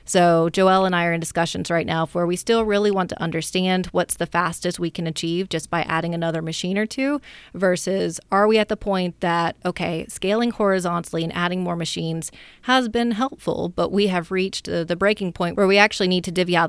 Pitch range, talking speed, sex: 165-200 Hz, 215 wpm, female